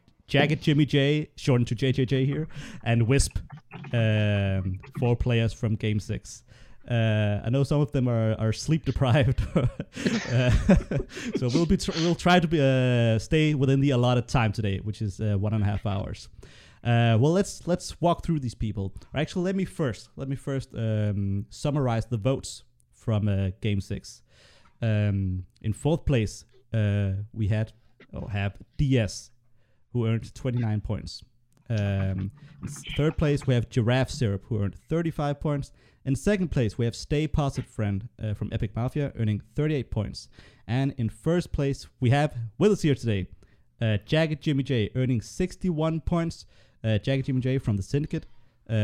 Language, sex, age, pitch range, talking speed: English, male, 30-49, 105-145 Hz, 170 wpm